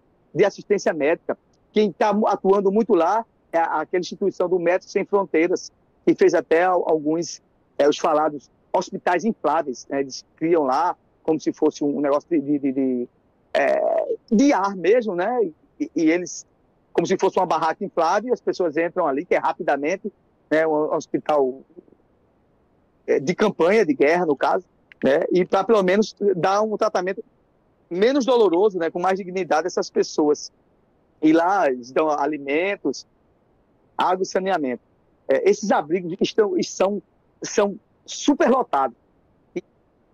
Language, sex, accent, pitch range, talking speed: Portuguese, male, Brazilian, 160-220 Hz, 150 wpm